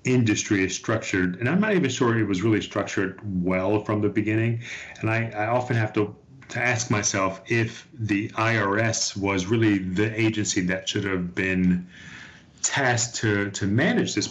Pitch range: 95-120 Hz